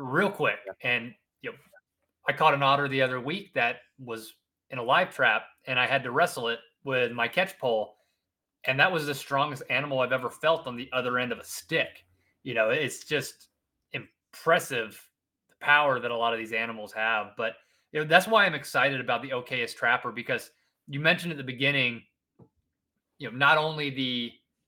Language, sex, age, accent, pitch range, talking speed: English, male, 30-49, American, 120-145 Hz, 195 wpm